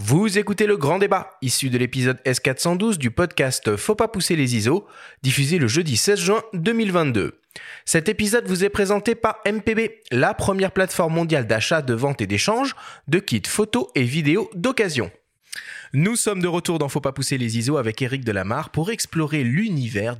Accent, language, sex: French, French, male